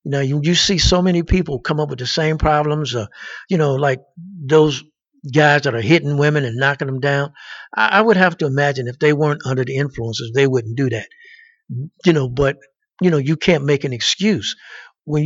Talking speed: 210 wpm